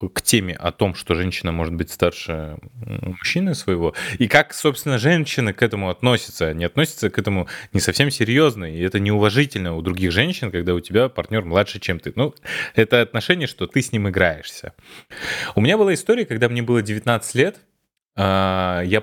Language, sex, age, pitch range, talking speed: Russian, male, 20-39, 85-115 Hz, 175 wpm